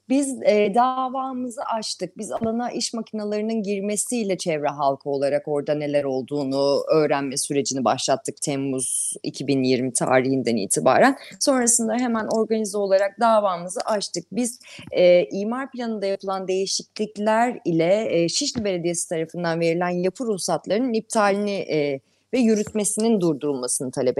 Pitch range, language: 165-235 Hz, Turkish